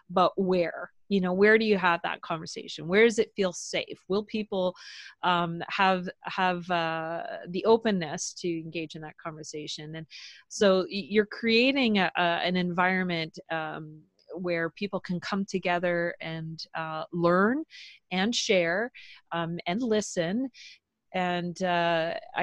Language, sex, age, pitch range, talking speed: English, female, 30-49, 165-195 Hz, 140 wpm